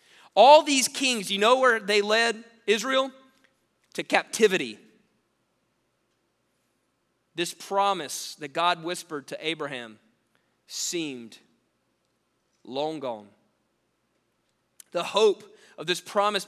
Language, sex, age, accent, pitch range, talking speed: English, male, 20-39, American, 150-215 Hz, 95 wpm